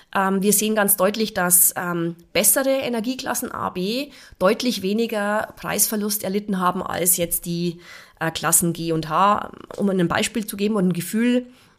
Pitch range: 185-240 Hz